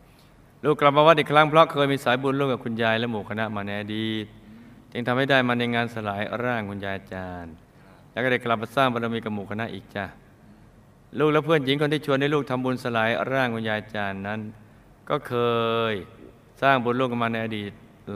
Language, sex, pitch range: Thai, male, 105-130 Hz